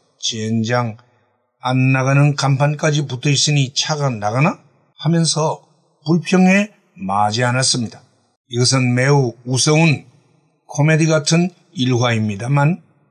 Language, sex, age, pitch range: Korean, male, 60-79, 130-175 Hz